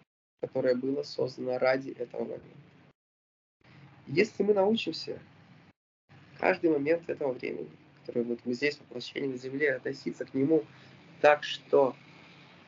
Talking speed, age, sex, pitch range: 125 wpm, 20-39, male, 120-160 Hz